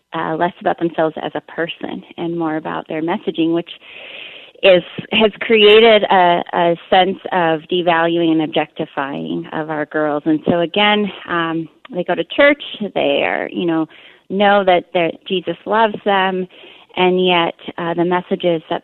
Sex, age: female, 30-49